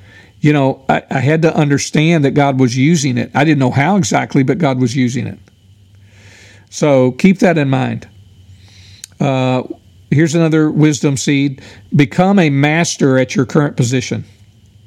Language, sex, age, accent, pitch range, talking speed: English, male, 50-69, American, 105-160 Hz, 155 wpm